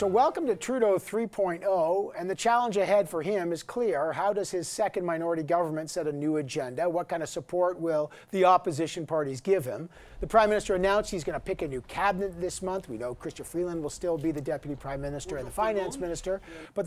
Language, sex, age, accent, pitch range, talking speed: English, male, 40-59, American, 155-195 Hz, 220 wpm